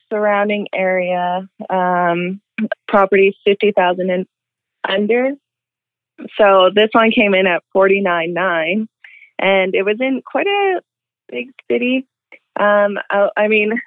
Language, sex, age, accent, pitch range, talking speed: English, female, 20-39, American, 180-210 Hz, 110 wpm